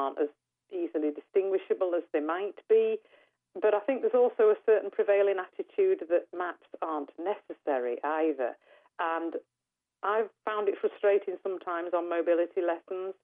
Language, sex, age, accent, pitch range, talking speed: English, female, 40-59, British, 155-210 Hz, 140 wpm